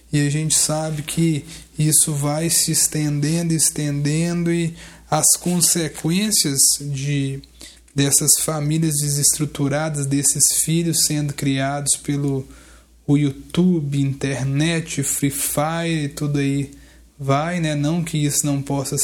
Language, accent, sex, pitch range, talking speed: Portuguese, Brazilian, male, 140-155 Hz, 115 wpm